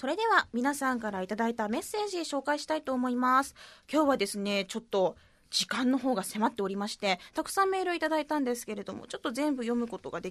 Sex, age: female, 20-39